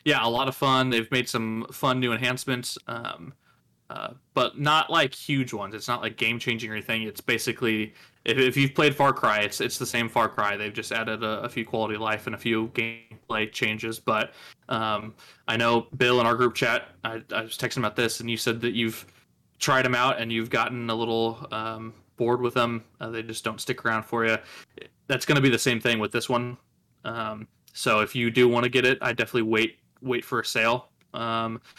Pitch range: 110-125 Hz